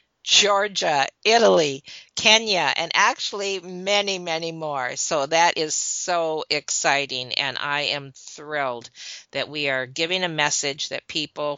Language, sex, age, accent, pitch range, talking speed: English, female, 50-69, American, 140-185 Hz, 130 wpm